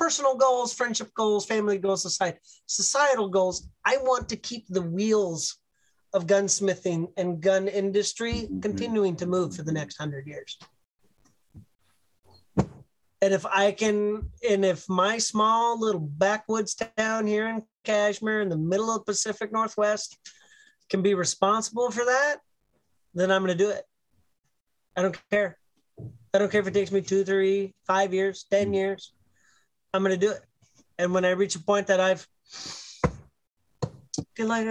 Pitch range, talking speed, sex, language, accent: 175-215 Hz, 150 wpm, male, English, American